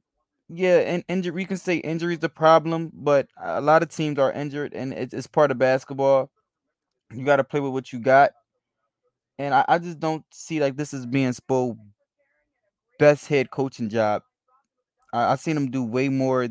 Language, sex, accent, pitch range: English, male, American, 125-150 Hz